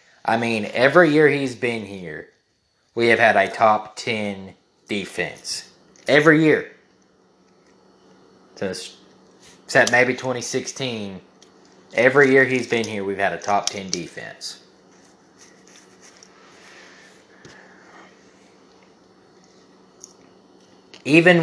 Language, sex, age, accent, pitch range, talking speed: English, male, 20-39, American, 105-135 Hz, 85 wpm